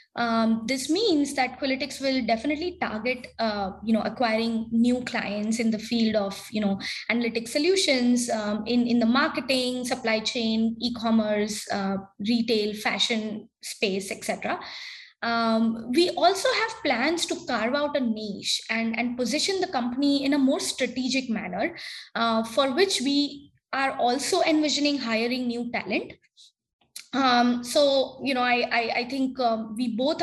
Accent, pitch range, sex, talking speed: Indian, 220-265 Hz, female, 150 wpm